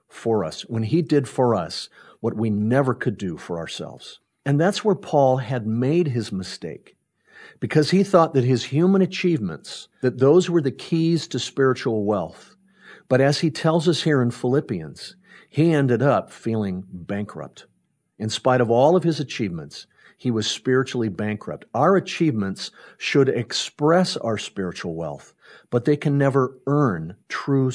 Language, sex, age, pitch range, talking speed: English, male, 50-69, 105-150 Hz, 160 wpm